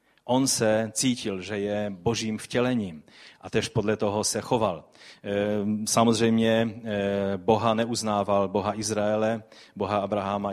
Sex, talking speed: male, 115 wpm